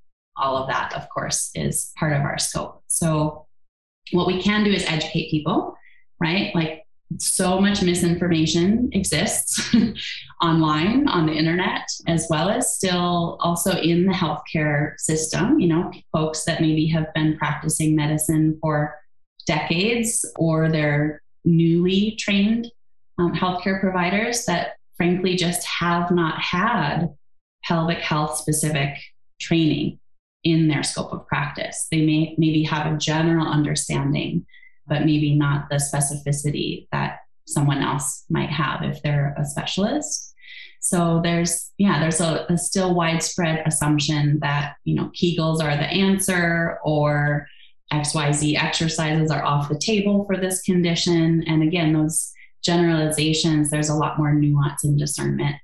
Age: 20-39